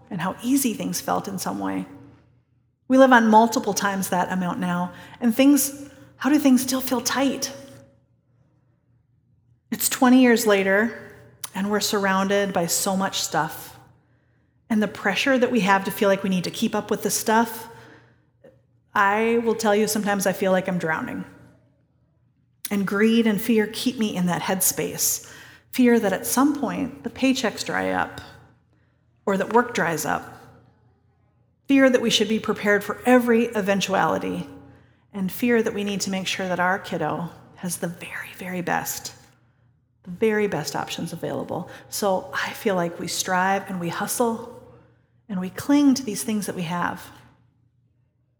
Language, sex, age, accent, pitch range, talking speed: English, female, 30-49, American, 135-220 Hz, 165 wpm